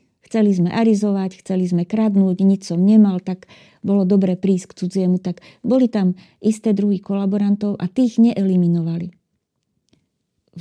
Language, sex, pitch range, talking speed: Slovak, female, 180-215 Hz, 140 wpm